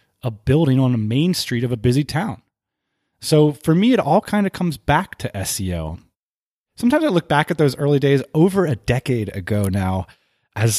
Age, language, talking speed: 20-39, English, 195 wpm